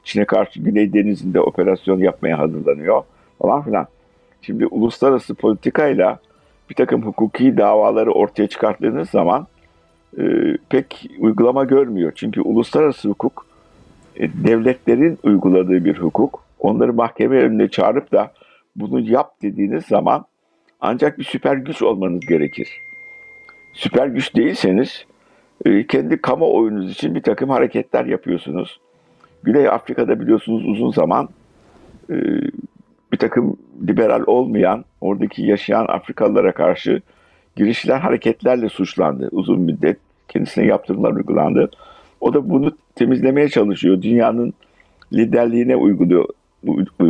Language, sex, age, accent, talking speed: Turkish, male, 50-69, native, 115 wpm